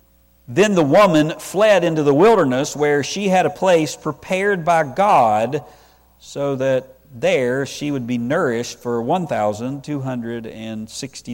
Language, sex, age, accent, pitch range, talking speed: English, male, 50-69, American, 105-150 Hz, 125 wpm